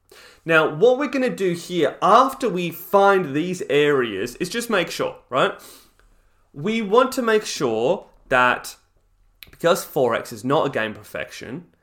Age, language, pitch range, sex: 20-39, English, 130-190 Hz, male